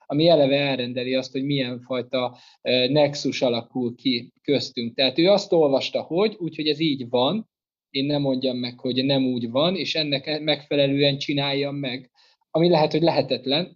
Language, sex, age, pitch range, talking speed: Hungarian, male, 20-39, 125-150 Hz, 160 wpm